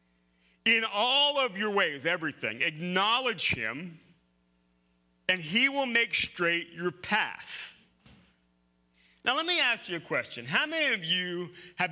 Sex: male